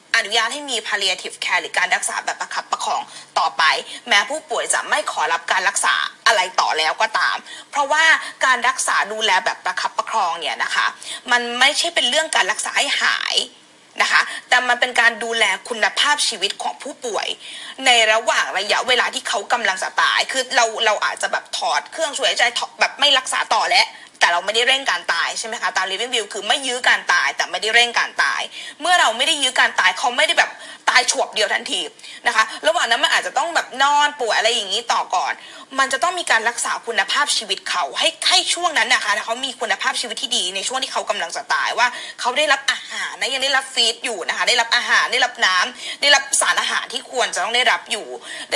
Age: 20-39